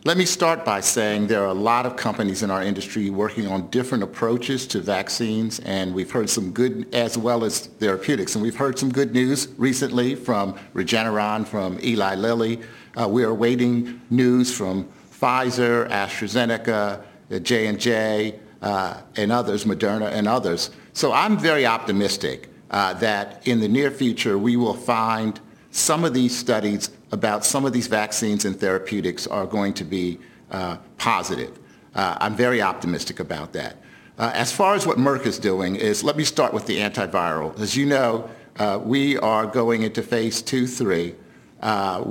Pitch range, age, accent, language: 105-125 Hz, 50-69, American, English